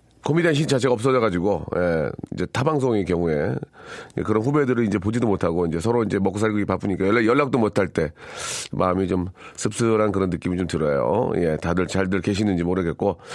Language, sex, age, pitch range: Korean, male, 40-59, 95-130 Hz